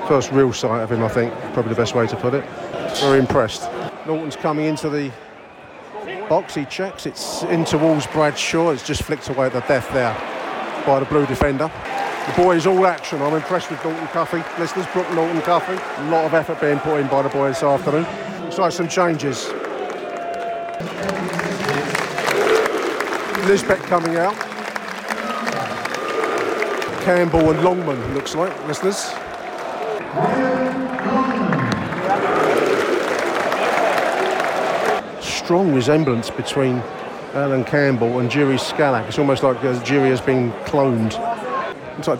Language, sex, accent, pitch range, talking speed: English, male, British, 135-185 Hz, 135 wpm